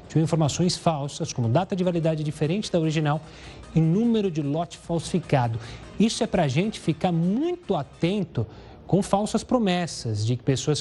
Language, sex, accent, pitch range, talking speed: Portuguese, male, Brazilian, 145-200 Hz, 150 wpm